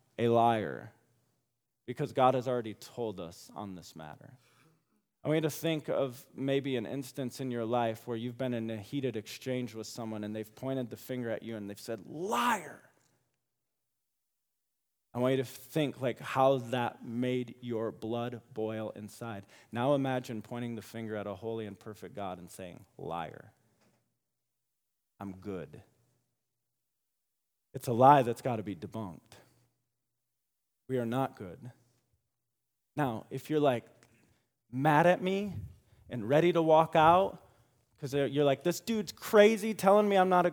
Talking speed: 160 wpm